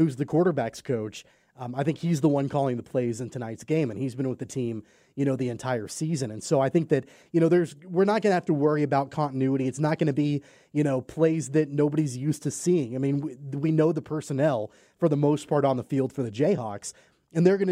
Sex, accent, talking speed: male, American, 260 wpm